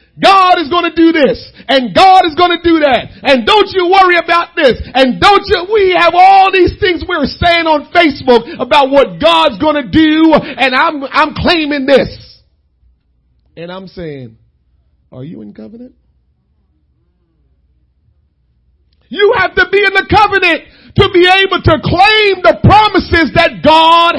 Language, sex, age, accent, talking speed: English, male, 40-59, American, 155 wpm